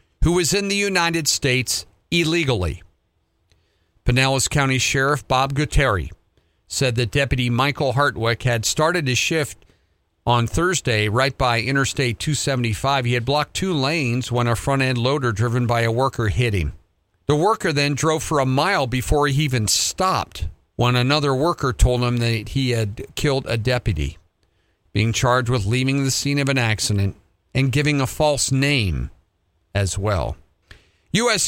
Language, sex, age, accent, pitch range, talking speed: English, male, 50-69, American, 100-140 Hz, 155 wpm